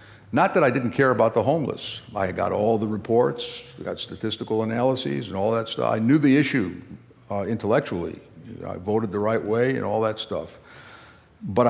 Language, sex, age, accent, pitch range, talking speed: English, male, 50-69, American, 100-115 Hz, 195 wpm